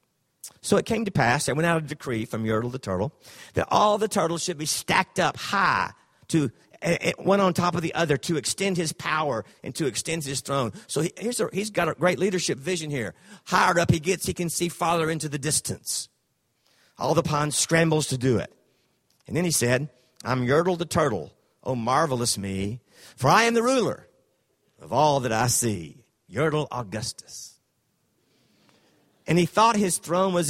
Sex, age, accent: male, 50-69, American